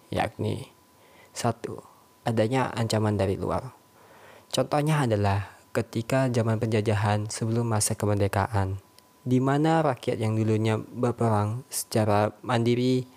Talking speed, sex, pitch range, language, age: 95 wpm, male, 105-125 Hz, Indonesian, 20-39